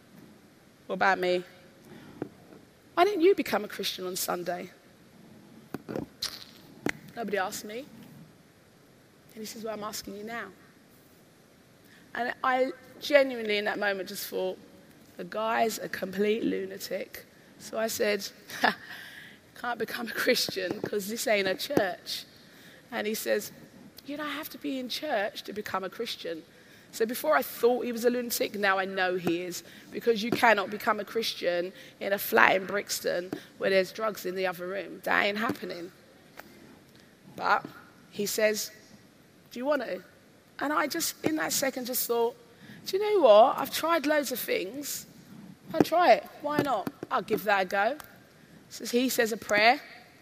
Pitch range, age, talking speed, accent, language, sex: 200-255 Hz, 20-39, 160 wpm, British, English, female